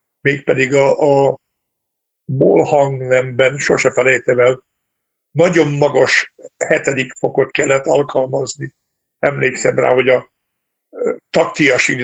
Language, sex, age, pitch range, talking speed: Hungarian, male, 60-79, 130-160 Hz, 85 wpm